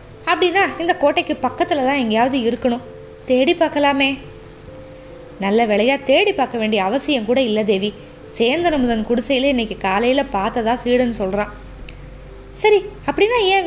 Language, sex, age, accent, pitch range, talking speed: Tamil, female, 20-39, native, 215-285 Hz, 125 wpm